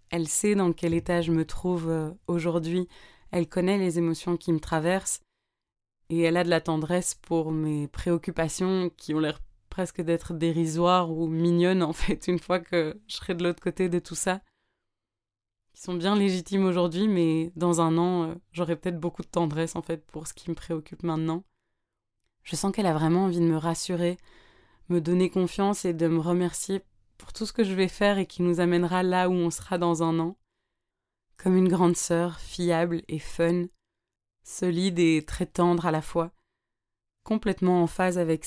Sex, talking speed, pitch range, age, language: female, 185 wpm, 165-180 Hz, 20-39, French